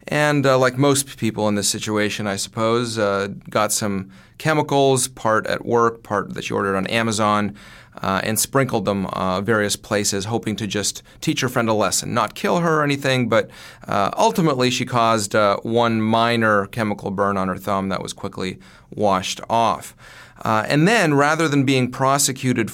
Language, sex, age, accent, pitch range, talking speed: English, male, 30-49, American, 100-125 Hz, 180 wpm